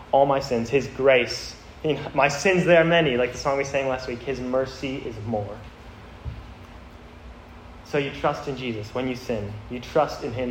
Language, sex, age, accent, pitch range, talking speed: English, male, 10-29, American, 85-140 Hz, 190 wpm